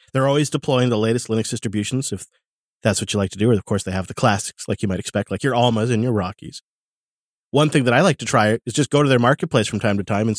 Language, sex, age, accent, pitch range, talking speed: English, male, 30-49, American, 110-140 Hz, 285 wpm